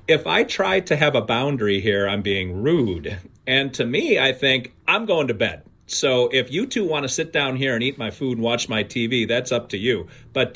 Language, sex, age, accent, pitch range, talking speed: English, male, 40-59, American, 110-135 Hz, 240 wpm